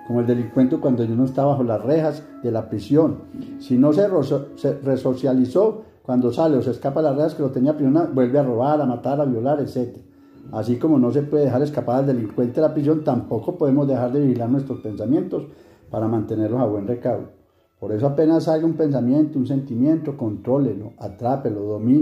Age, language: 50-69, Spanish